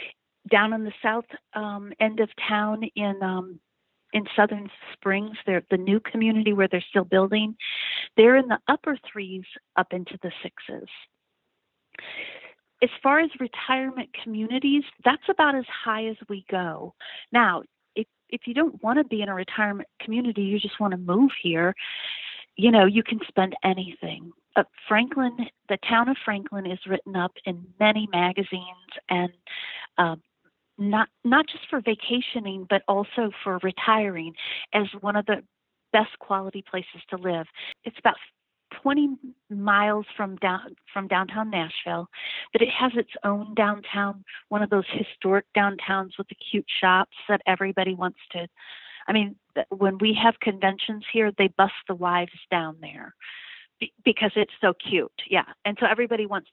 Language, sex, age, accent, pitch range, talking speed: English, female, 40-59, American, 190-230 Hz, 155 wpm